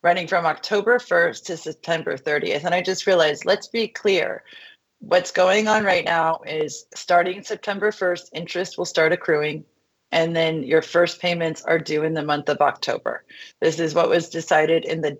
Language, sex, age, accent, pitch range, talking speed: English, female, 30-49, American, 155-185 Hz, 180 wpm